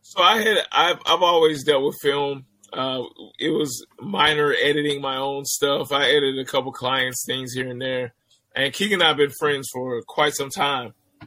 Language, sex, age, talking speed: English, male, 20-39, 195 wpm